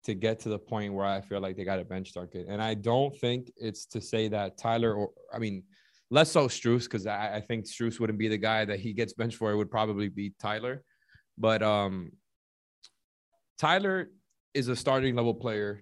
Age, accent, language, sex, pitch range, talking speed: 20-39, American, English, male, 105-120 Hz, 210 wpm